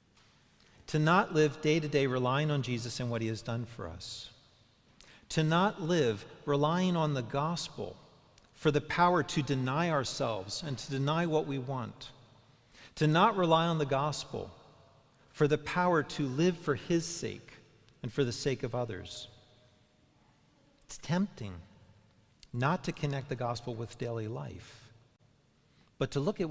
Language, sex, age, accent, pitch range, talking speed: English, male, 40-59, American, 115-155 Hz, 150 wpm